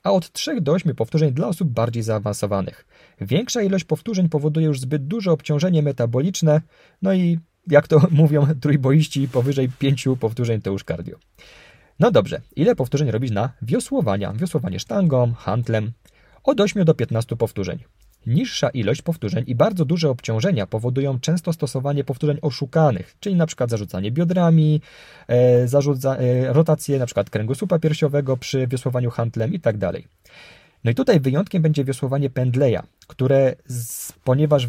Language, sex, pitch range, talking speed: Polish, male, 115-155 Hz, 150 wpm